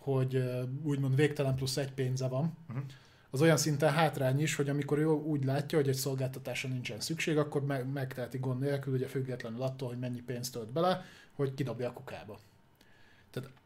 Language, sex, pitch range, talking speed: Hungarian, male, 130-150 Hz, 170 wpm